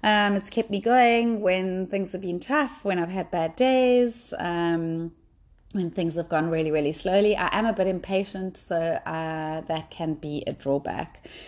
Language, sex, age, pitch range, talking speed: English, female, 30-49, 175-225 Hz, 185 wpm